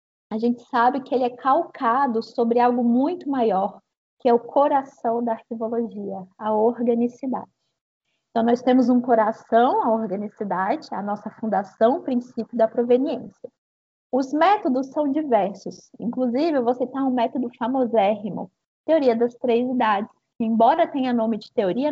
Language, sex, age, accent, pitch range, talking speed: Portuguese, female, 20-39, Brazilian, 225-275 Hz, 140 wpm